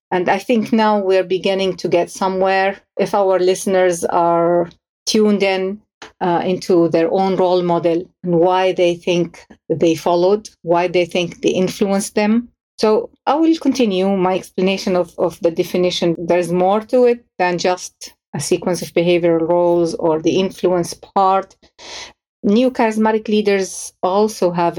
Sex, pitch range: female, 175-205 Hz